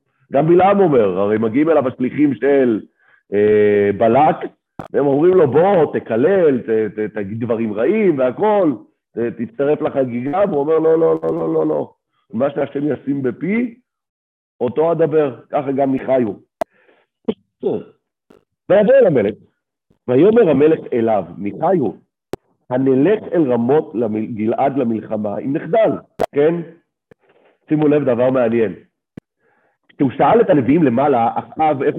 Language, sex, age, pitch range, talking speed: Hebrew, male, 50-69, 115-155 Hz, 115 wpm